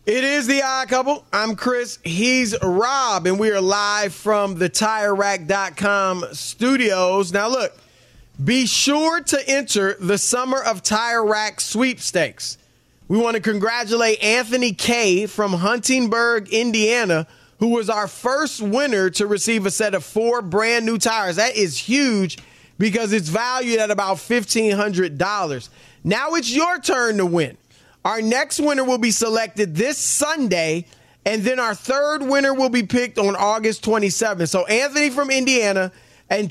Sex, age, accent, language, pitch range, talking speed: male, 30-49, American, English, 195-245 Hz, 150 wpm